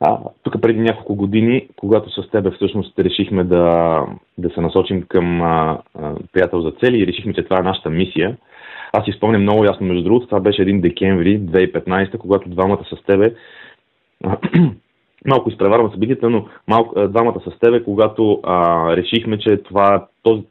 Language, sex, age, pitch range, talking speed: Bulgarian, male, 30-49, 85-100 Hz, 165 wpm